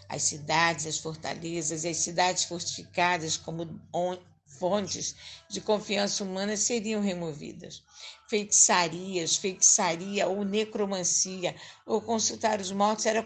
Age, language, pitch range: 50-69, Portuguese, 180-220 Hz